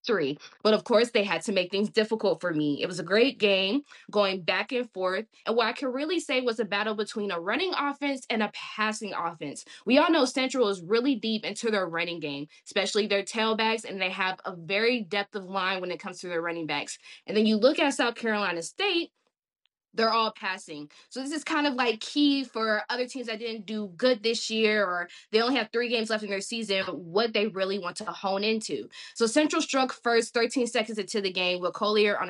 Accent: American